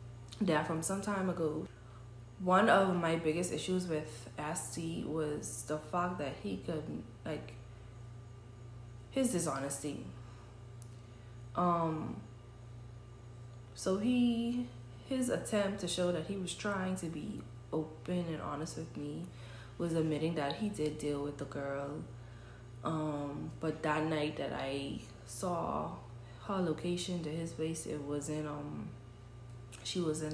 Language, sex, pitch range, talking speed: English, female, 120-175 Hz, 135 wpm